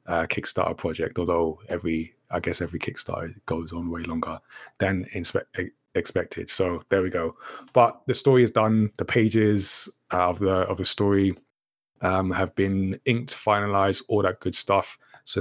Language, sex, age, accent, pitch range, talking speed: English, male, 20-39, British, 90-110 Hz, 160 wpm